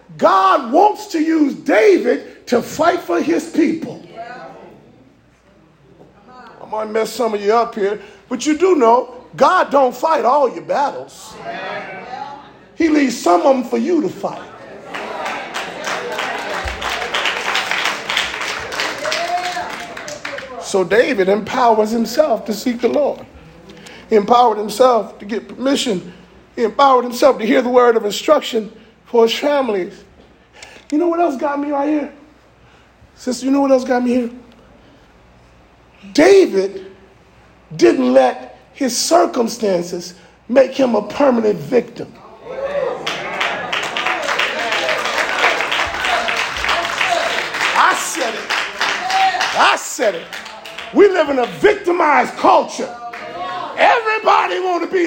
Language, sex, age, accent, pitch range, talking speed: English, male, 40-59, American, 225-310 Hz, 115 wpm